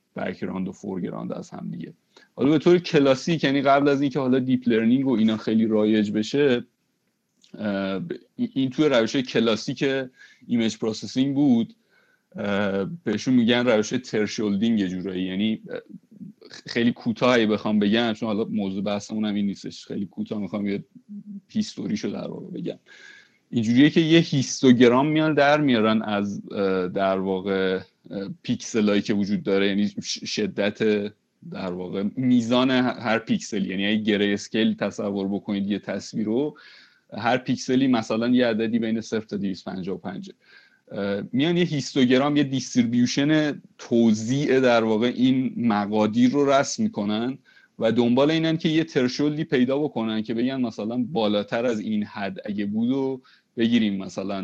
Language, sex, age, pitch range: Persian, male, 30-49, 105-140 Hz